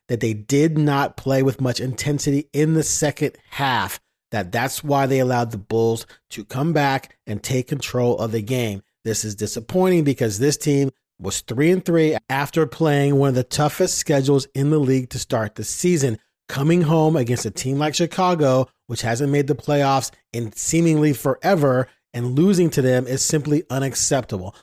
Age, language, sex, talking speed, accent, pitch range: 40-59, English, male, 180 wpm, American, 125-155 Hz